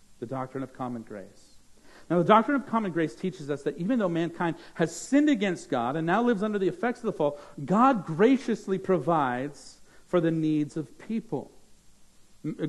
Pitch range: 155-210 Hz